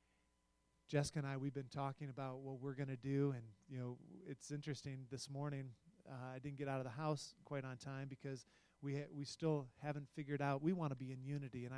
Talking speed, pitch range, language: 230 wpm, 130-150 Hz, English